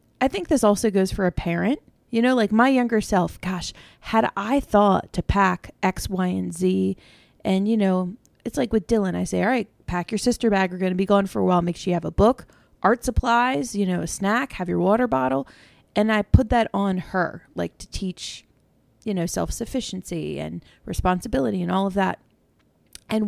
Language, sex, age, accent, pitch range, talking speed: English, female, 30-49, American, 170-225 Hz, 210 wpm